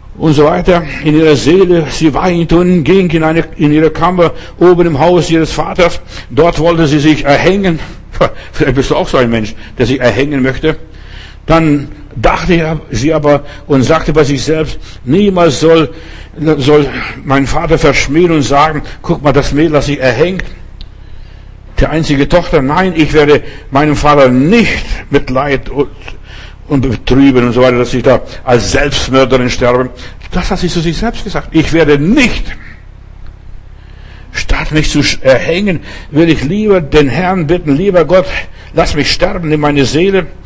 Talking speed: 165 wpm